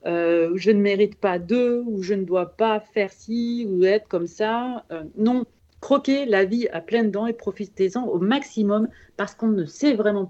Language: French